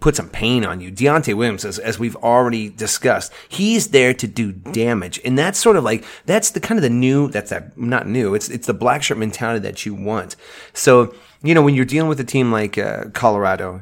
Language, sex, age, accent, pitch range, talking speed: English, male, 30-49, American, 100-130 Hz, 225 wpm